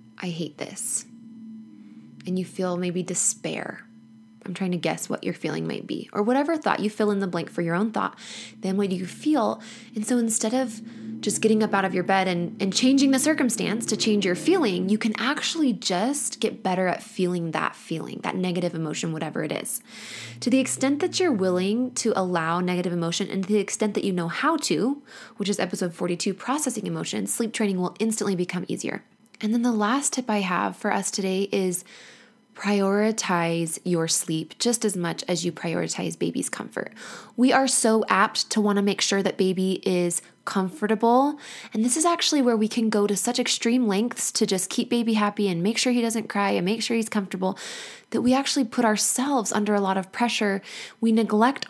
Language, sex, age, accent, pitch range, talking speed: English, female, 20-39, American, 185-235 Hz, 205 wpm